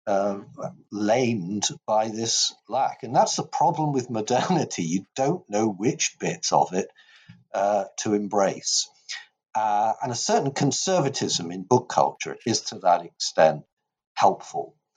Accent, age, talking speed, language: British, 50-69, 135 wpm, English